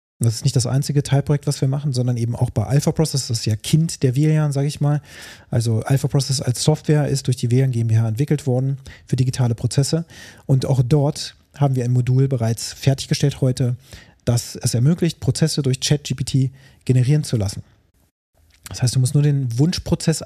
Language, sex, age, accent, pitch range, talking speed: German, male, 30-49, German, 115-145 Hz, 195 wpm